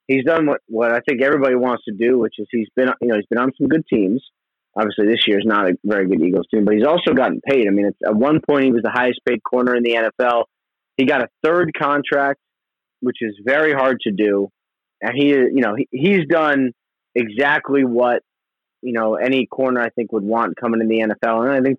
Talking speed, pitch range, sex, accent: 240 wpm, 115-135 Hz, male, American